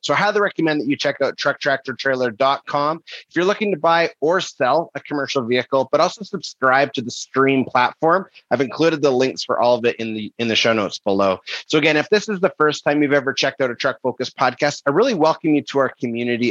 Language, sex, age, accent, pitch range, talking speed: English, male, 30-49, American, 120-155 Hz, 225 wpm